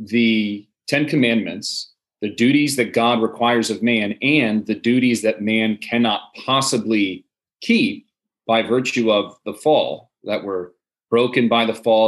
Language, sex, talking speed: English, male, 145 wpm